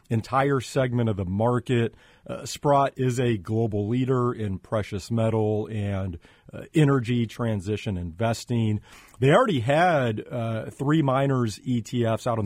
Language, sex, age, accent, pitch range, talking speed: English, male, 40-59, American, 110-140 Hz, 135 wpm